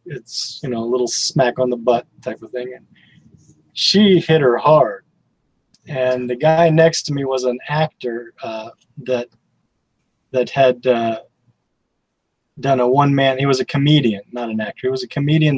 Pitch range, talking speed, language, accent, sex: 120-155 Hz, 175 wpm, English, American, male